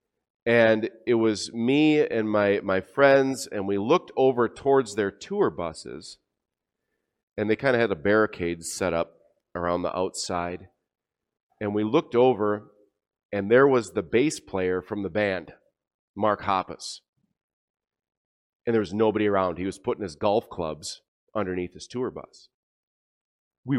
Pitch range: 100-135 Hz